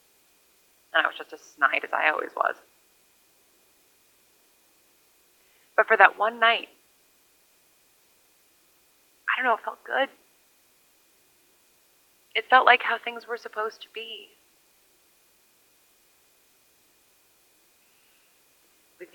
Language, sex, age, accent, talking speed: English, female, 20-39, American, 95 wpm